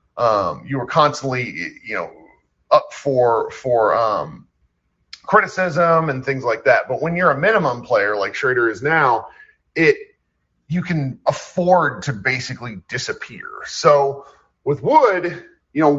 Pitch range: 130-180 Hz